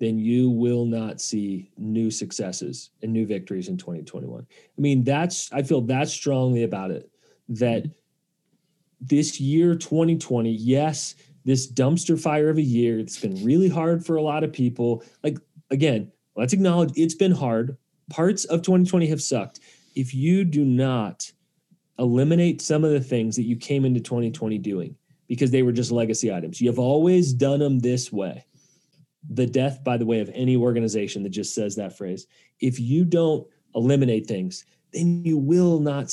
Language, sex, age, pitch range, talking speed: English, male, 30-49, 120-160 Hz, 170 wpm